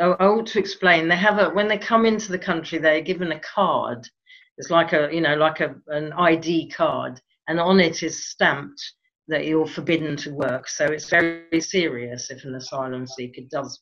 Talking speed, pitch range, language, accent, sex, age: 205 wpm, 140-180 Hz, English, British, female, 40-59